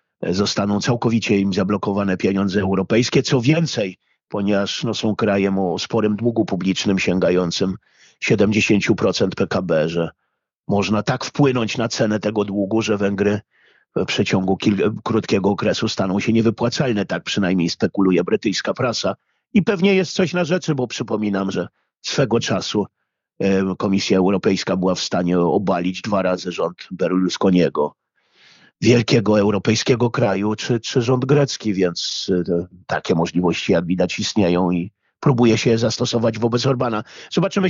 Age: 50-69